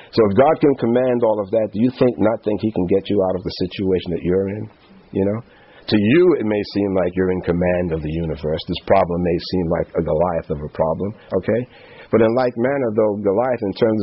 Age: 50-69